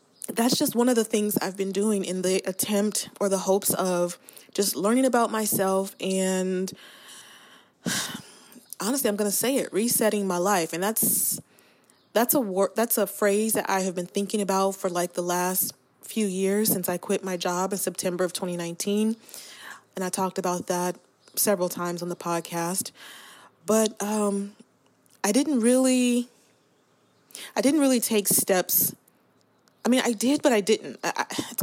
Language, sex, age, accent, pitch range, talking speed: English, female, 20-39, American, 185-220 Hz, 165 wpm